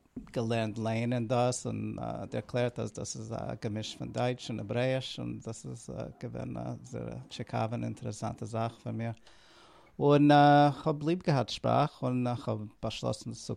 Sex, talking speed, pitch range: male, 170 wpm, 110-125 Hz